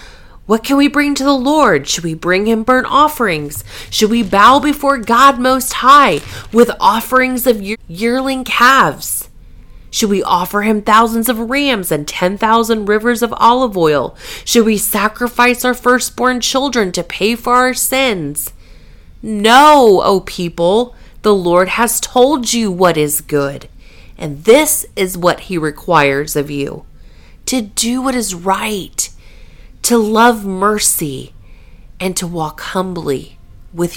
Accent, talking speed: American, 145 wpm